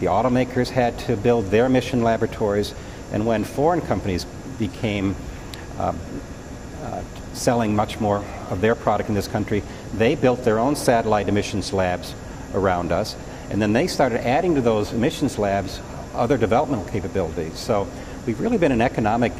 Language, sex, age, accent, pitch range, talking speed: English, male, 60-79, American, 95-115 Hz, 160 wpm